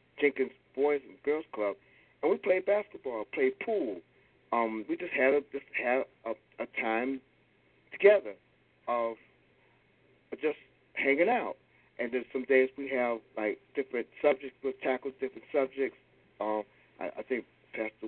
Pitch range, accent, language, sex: 115-140 Hz, American, English, male